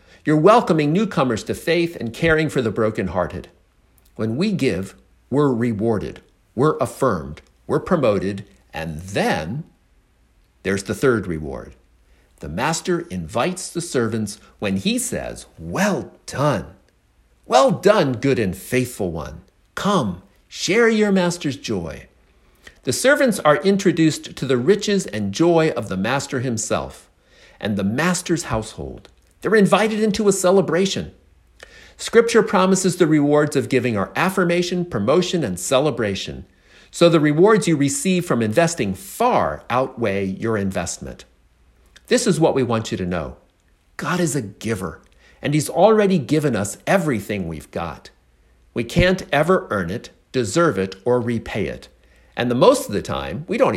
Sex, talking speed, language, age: male, 145 wpm, English, 50-69